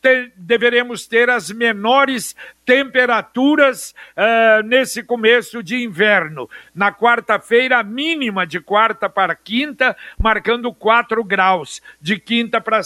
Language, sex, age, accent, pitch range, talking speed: Portuguese, male, 60-79, Brazilian, 195-240 Hz, 105 wpm